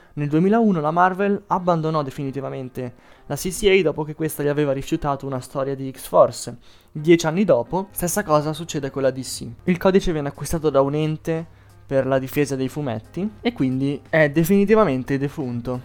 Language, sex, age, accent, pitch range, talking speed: Italian, male, 20-39, native, 135-180 Hz, 165 wpm